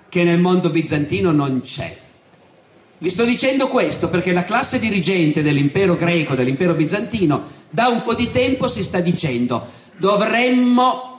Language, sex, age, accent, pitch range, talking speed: Italian, male, 50-69, native, 155-210 Hz, 145 wpm